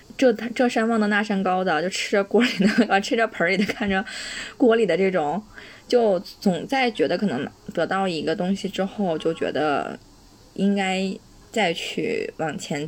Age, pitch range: 20-39, 180-235 Hz